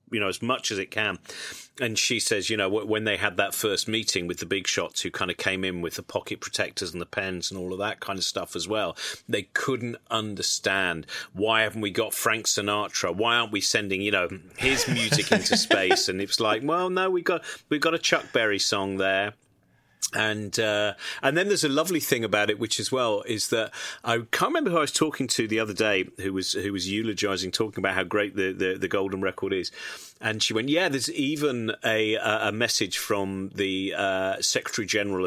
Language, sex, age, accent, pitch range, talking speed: English, male, 40-59, British, 95-110 Hz, 225 wpm